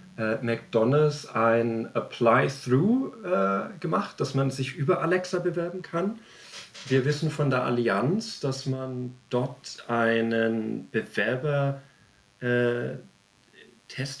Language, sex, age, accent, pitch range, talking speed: German, male, 40-59, German, 115-140 Hz, 95 wpm